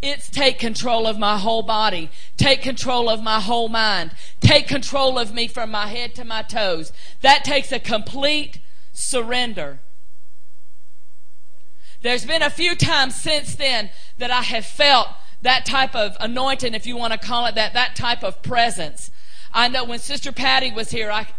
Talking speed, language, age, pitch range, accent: 175 wpm, English, 40-59, 205-250 Hz, American